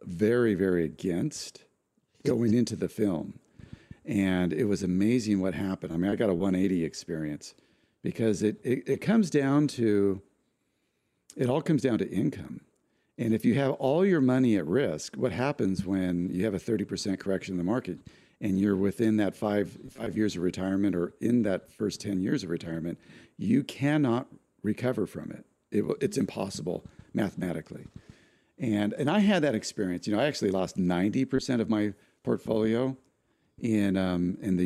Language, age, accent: English, 50-69, American